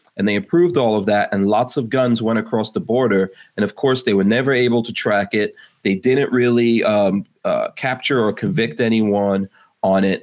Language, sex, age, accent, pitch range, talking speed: English, male, 30-49, American, 100-125 Hz, 205 wpm